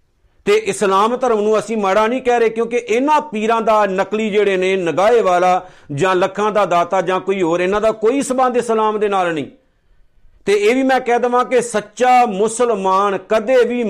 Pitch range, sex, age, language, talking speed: 190-225 Hz, male, 50-69, Punjabi, 190 wpm